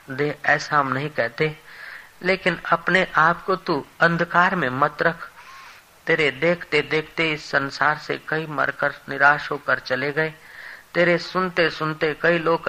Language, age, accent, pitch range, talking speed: Hindi, 40-59, native, 130-150 Hz, 135 wpm